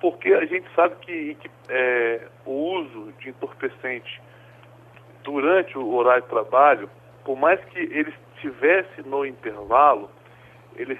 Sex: male